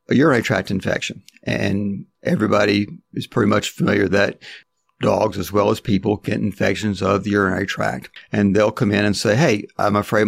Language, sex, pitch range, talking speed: English, male, 100-115 Hz, 180 wpm